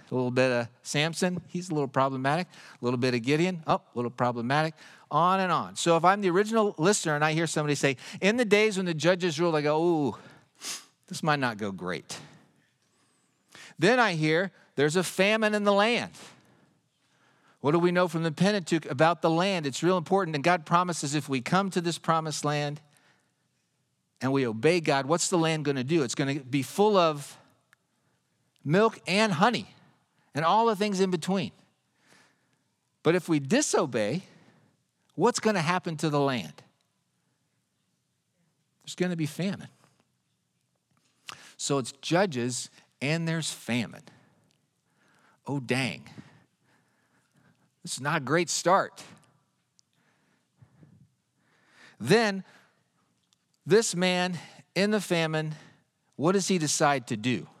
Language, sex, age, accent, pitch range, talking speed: English, male, 50-69, American, 145-185 Hz, 150 wpm